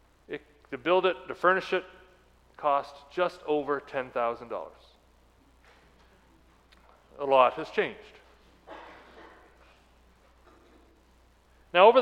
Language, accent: English, American